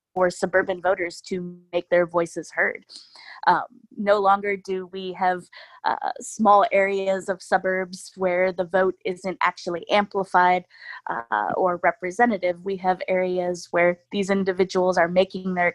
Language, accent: English, American